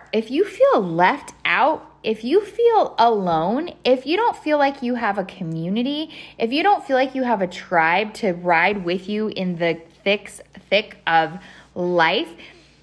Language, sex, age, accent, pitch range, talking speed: English, female, 20-39, American, 185-260 Hz, 175 wpm